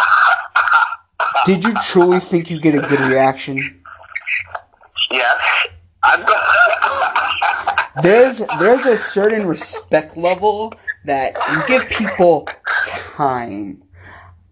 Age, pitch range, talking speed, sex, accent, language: 20-39, 130-185 Hz, 85 wpm, male, American, English